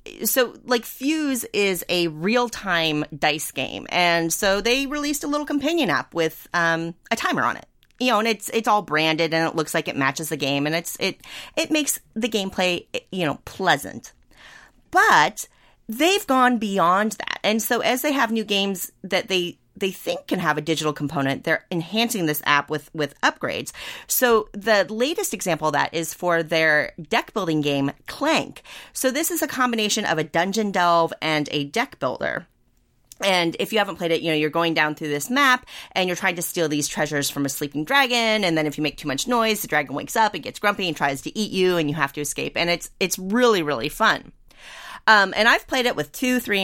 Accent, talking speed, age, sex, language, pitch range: American, 215 wpm, 30-49, female, English, 160-245 Hz